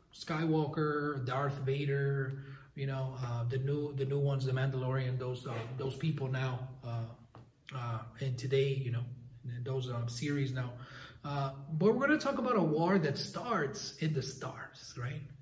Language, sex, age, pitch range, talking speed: English, male, 30-49, 130-165 Hz, 165 wpm